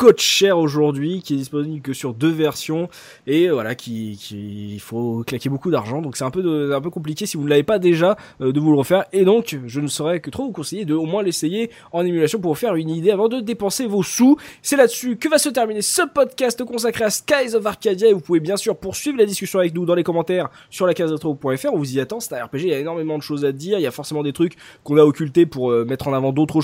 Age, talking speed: 20-39, 280 wpm